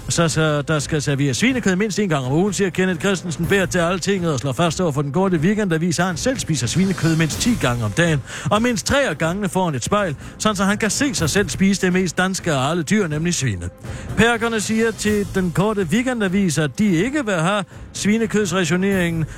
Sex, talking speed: male, 215 wpm